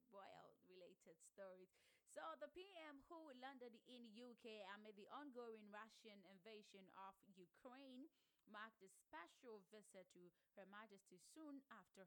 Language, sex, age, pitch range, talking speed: English, female, 20-39, 190-255 Hz, 125 wpm